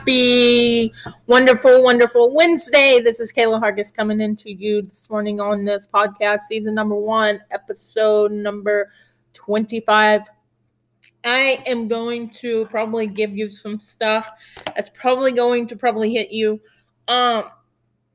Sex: female